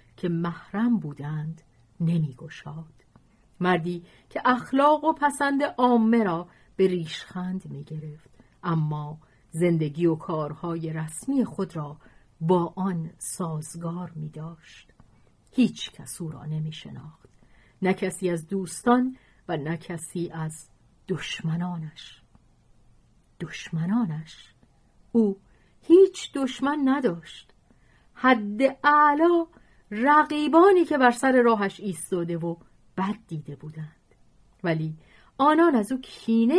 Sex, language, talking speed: female, Persian, 105 wpm